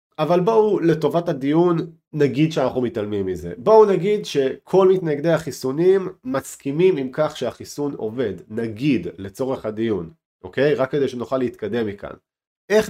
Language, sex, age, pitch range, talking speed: Hebrew, male, 40-59, 110-165 Hz, 130 wpm